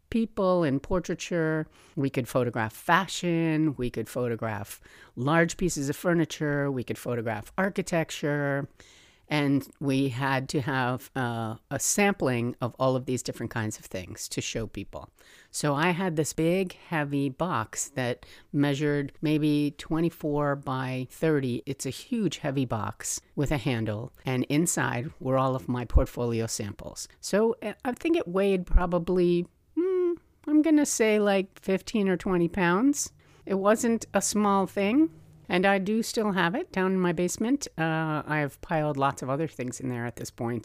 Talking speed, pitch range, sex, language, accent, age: 160 wpm, 125-180 Hz, female, English, American, 50-69